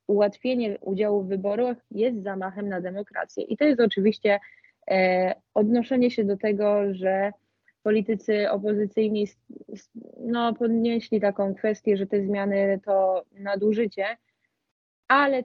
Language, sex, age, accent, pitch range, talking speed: Polish, female, 20-39, native, 190-230 Hz, 110 wpm